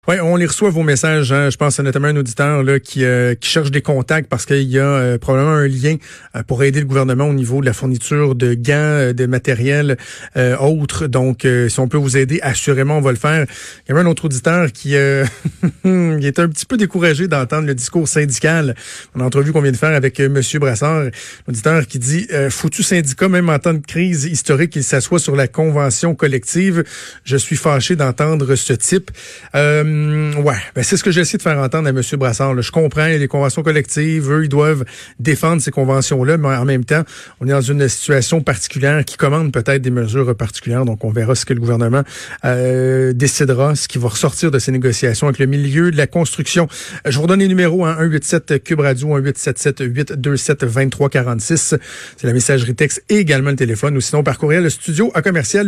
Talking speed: 210 wpm